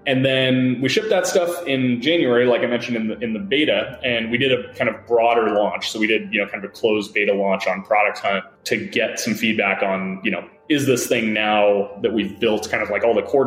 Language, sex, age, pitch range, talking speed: English, male, 20-39, 105-130 Hz, 260 wpm